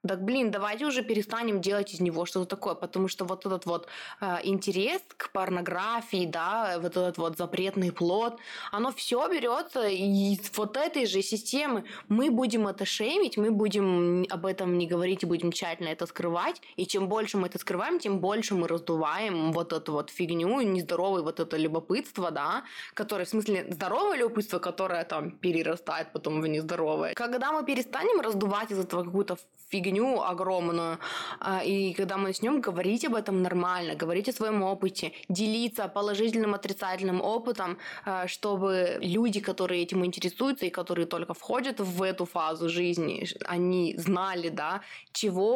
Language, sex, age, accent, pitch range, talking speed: Russian, female, 20-39, native, 180-210 Hz, 160 wpm